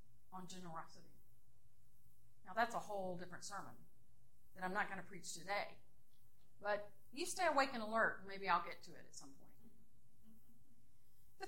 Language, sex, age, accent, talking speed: English, female, 40-59, American, 155 wpm